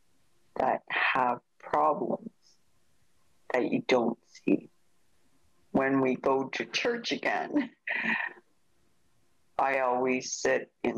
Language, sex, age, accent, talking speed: English, female, 60-79, American, 95 wpm